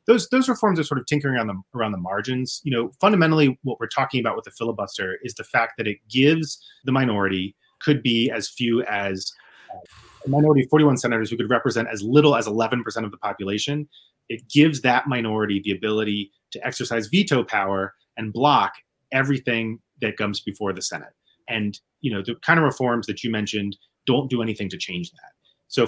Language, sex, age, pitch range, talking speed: English, male, 30-49, 105-135 Hz, 195 wpm